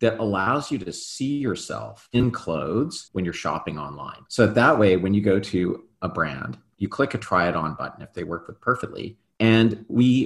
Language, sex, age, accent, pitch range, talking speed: English, male, 40-59, American, 85-105 Hz, 200 wpm